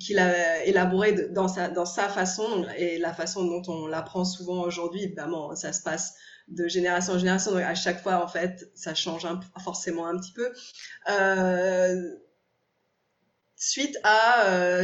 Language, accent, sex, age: French, French, female, 20-39